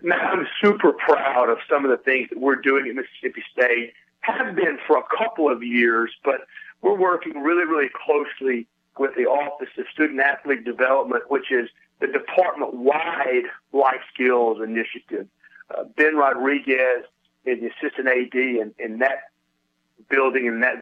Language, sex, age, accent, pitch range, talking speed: English, male, 40-59, American, 125-180 Hz, 155 wpm